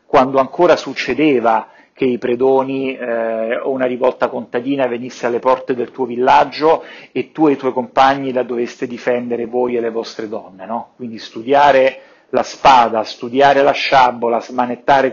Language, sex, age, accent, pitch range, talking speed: Italian, male, 40-59, native, 120-140 Hz, 160 wpm